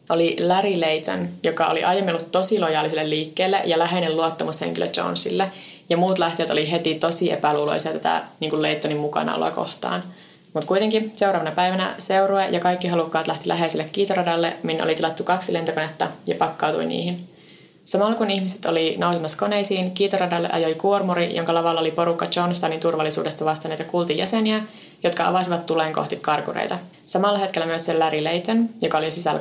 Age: 20-39